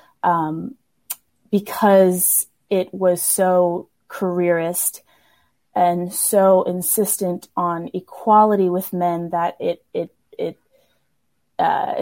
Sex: female